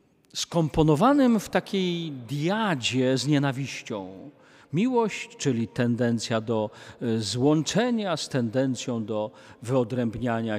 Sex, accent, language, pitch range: male, native, Polish, 125-170 Hz